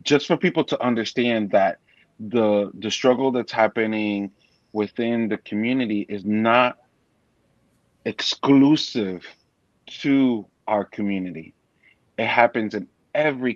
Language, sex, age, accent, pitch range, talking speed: English, male, 30-49, American, 105-120 Hz, 105 wpm